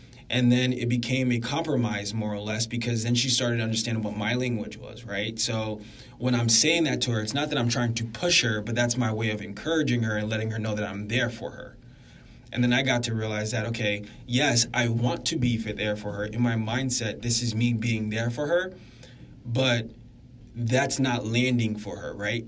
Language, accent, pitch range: English, American, 110-125 Hz